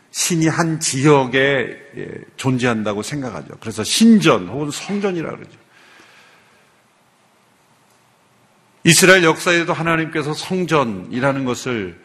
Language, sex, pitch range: Korean, male, 120-180 Hz